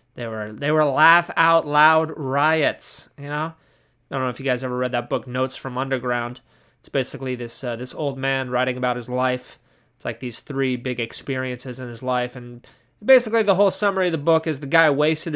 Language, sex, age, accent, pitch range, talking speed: English, male, 20-39, American, 135-180 Hz, 215 wpm